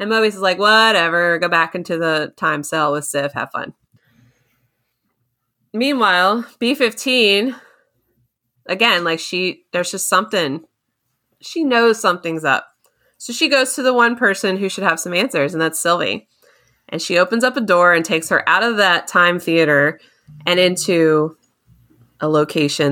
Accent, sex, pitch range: American, female, 155-215 Hz